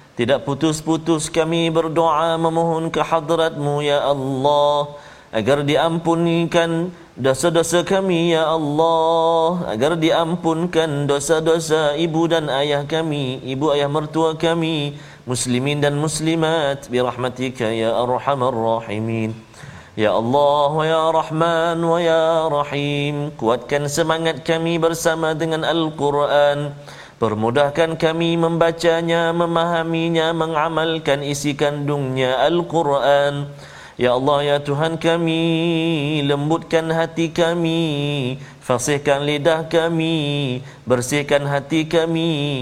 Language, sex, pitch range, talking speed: Malayalam, male, 135-165 Hz, 95 wpm